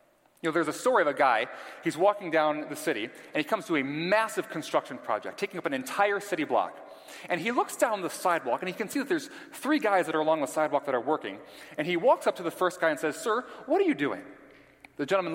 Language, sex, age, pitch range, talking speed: English, male, 30-49, 140-210 Hz, 260 wpm